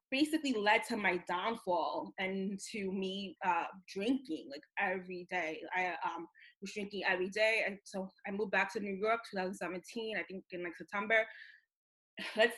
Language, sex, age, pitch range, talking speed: English, female, 20-39, 185-225 Hz, 160 wpm